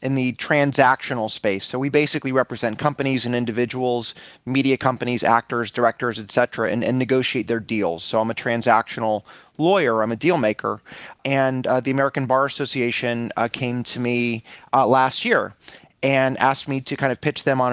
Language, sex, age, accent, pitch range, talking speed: English, male, 30-49, American, 120-140 Hz, 175 wpm